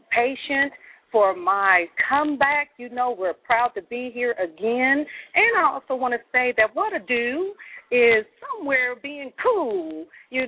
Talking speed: 155 wpm